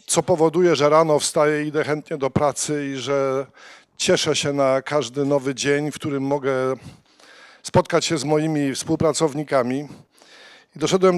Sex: male